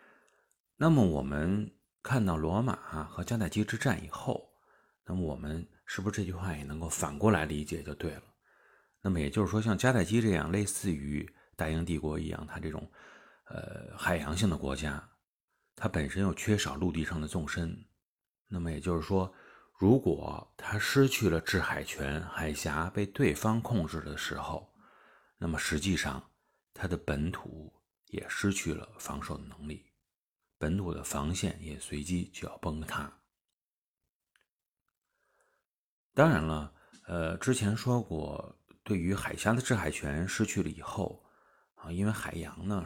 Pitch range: 80-105 Hz